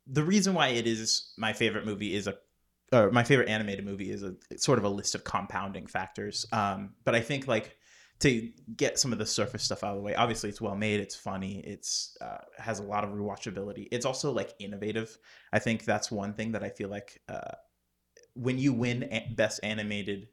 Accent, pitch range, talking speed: American, 100-120 Hz, 210 wpm